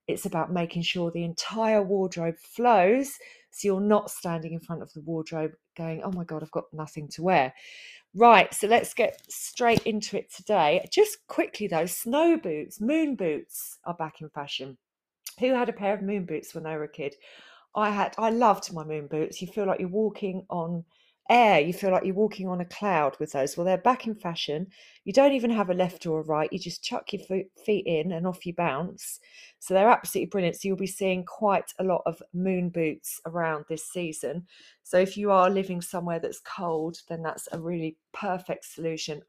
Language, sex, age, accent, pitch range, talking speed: English, female, 40-59, British, 165-210 Hz, 210 wpm